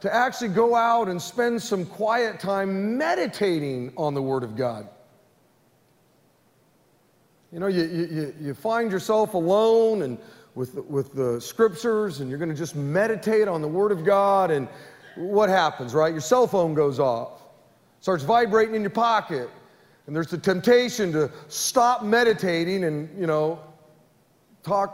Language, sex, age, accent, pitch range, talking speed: English, male, 40-59, American, 150-220 Hz, 155 wpm